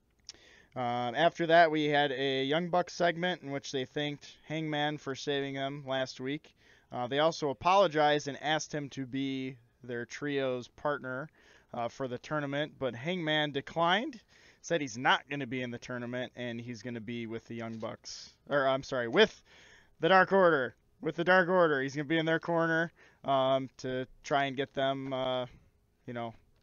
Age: 20-39